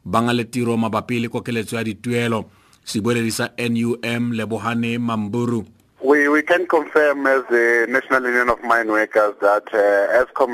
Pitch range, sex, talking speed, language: 115-130 Hz, male, 75 wpm, English